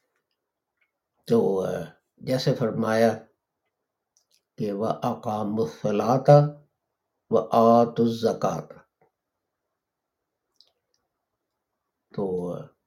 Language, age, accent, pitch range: English, 60-79, Indian, 120-155 Hz